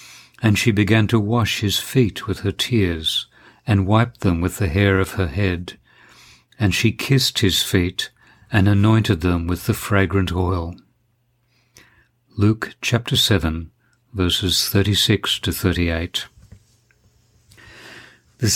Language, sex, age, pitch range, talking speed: English, male, 60-79, 90-115 Hz, 125 wpm